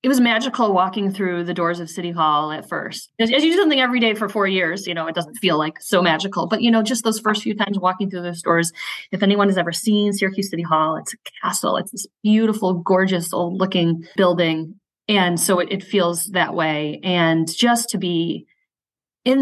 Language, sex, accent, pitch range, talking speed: English, female, American, 170-205 Hz, 220 wpm